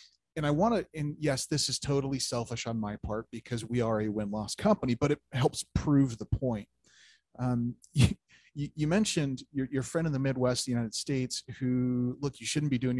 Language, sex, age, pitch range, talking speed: English, male, 30-49, 120-155 Hz, 205 wpm